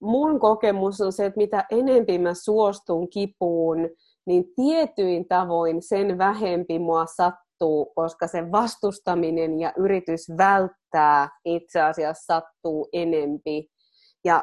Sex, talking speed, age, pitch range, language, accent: female, 115 wpm, 20-39, 170-200 Hz, Finnish, native